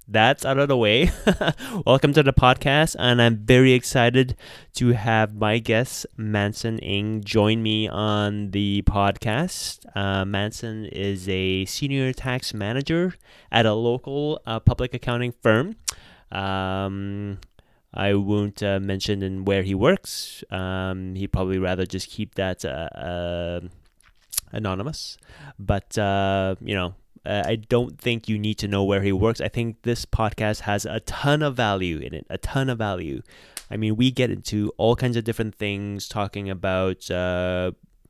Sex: male